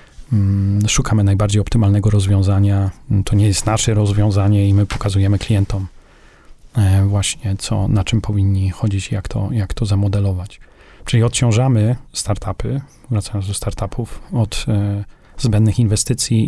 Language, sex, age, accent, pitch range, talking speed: Polish, male, 30-49, native, 95-110 Hz, 120 wpm